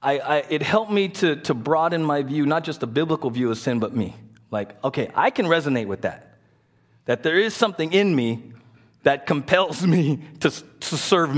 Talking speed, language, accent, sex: 200 wpm, English, American, male